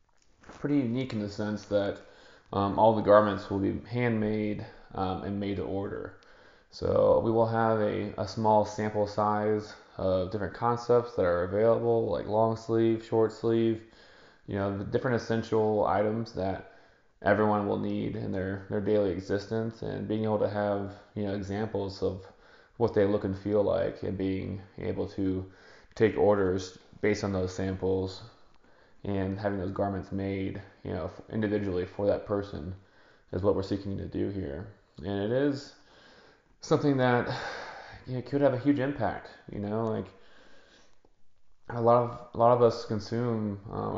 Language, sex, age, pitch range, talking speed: English, male, 20-39, 100-115 Hz, 165 wpm